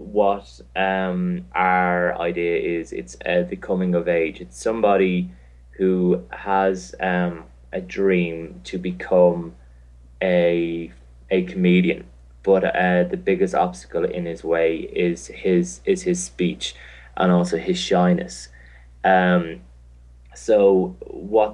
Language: English